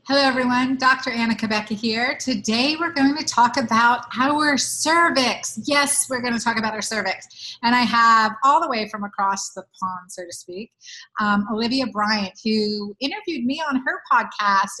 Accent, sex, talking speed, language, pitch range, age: American, female, 180 wpm, English, 215-255 Hz, 30-49